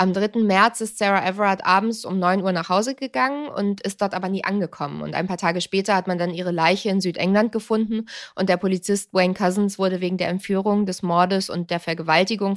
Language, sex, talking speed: German, female, 220 wpm